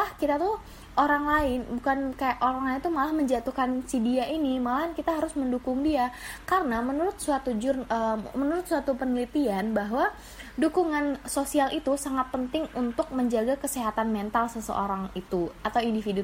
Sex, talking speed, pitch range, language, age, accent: female, 145 wpm, 230-290 Hz, Indonesian, 20-39, native